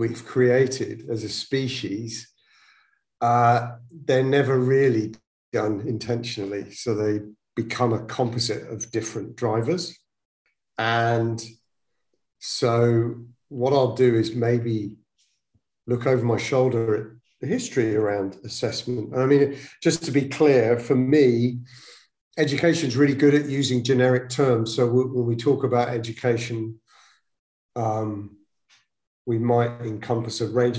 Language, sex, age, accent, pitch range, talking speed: English, male, 50-69, British, 110-130 Hz, 125 wpm